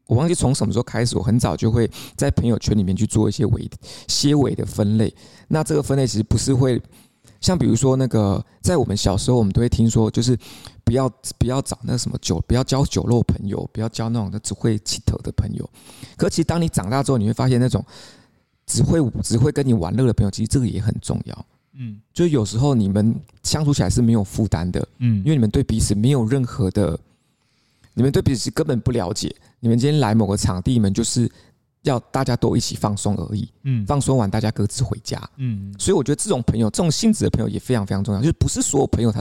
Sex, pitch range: male, 105-130 Hz